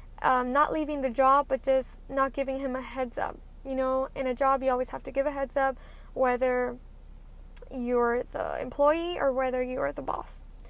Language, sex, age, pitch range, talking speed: English, female, 10-29, 265-290 Hz, 200 wpm